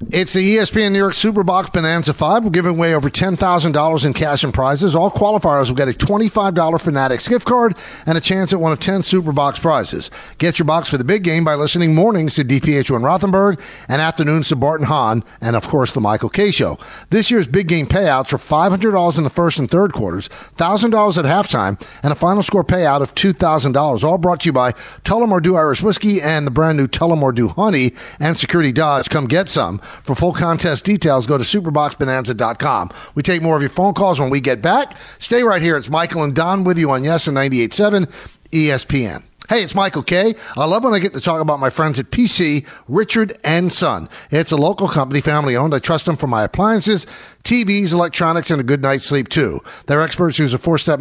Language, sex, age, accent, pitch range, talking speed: English, male, 50-69, American, 145-190 Hz, 210 wpm